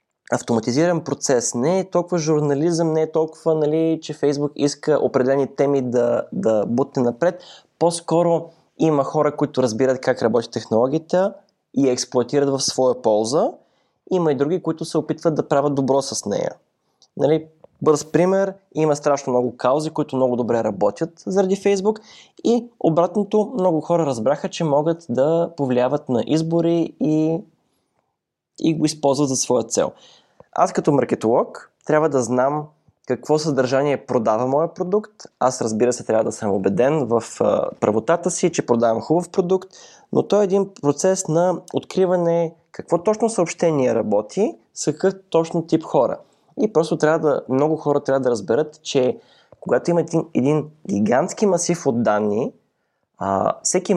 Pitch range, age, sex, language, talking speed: 135-175 Hz, 20-39, male, Bulgarian, 145 wpm